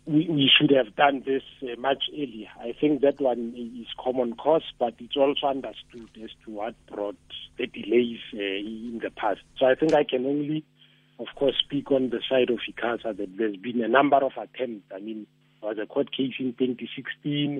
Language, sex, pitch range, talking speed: English, male, 115-135 Hz, 195 wpm